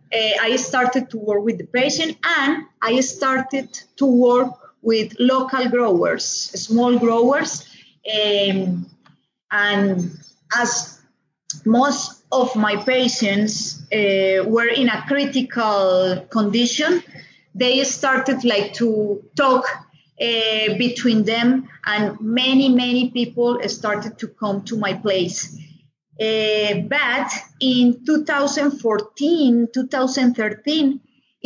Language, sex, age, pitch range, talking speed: English, female, 30-49, 210-260 Hz, 100 wpm